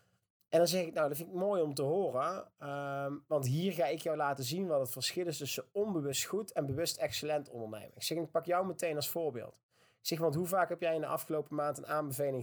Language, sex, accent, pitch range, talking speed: Dutch, male, Dutch, 130-170 Hz, 250 wpm